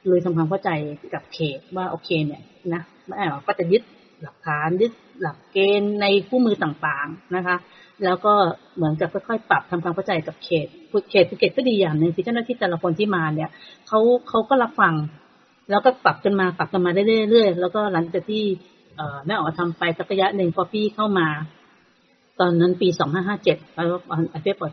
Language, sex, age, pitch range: Thai, female, 30-49, 165-205 Hz